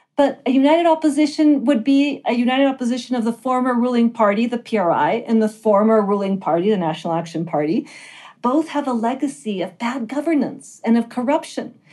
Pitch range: 200-255 Hz